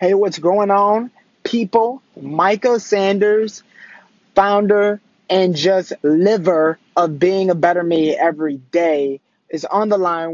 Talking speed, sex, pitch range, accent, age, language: 130 wpm, male, 165-210 Hz, American, 20-39, English